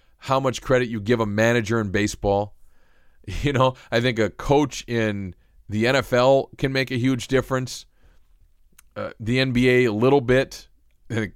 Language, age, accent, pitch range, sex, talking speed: English, 40-59, American, 105-125 Hz, male, 165 wpm